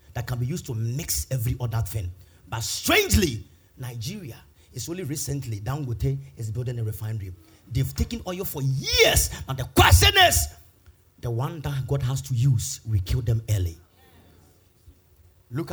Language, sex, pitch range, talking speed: English, male, 90-135 Hz, 155 wpm